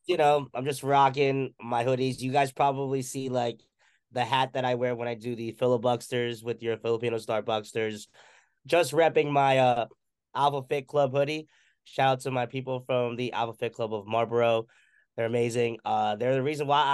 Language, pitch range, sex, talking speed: English, 120-140 Hz, male, 190 wpm